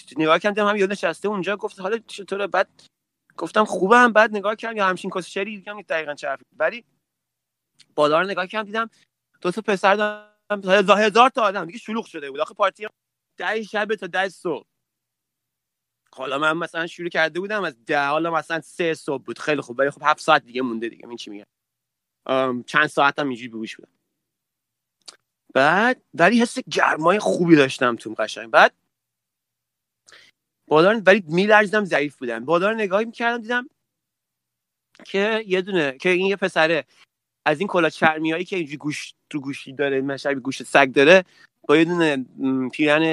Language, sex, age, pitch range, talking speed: Persian, male, 30-49, 145-200 Hz, 160 wpm